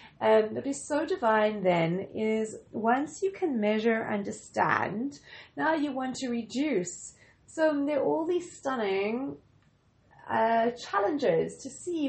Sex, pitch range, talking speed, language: female, 220-280 Hz, 135 wpm, English